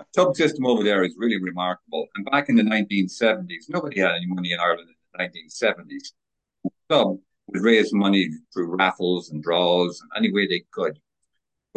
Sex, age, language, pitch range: male, 50-69, English, 90-120 Hz